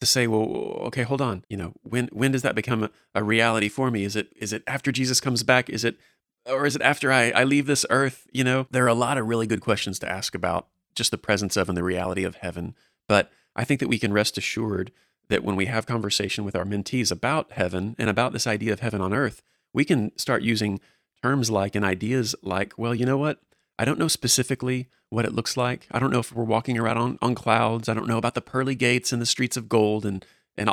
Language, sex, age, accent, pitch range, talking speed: English, male, 30-49, American, 105-125 Hz, 255 wpm